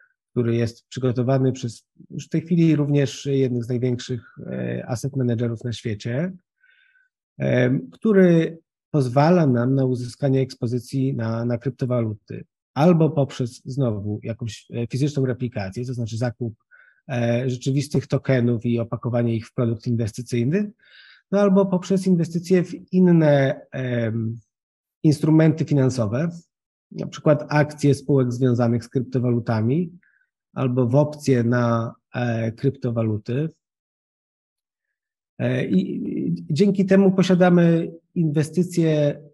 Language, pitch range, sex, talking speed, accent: Polish, 120-160 Hz, male, 100 wpm, native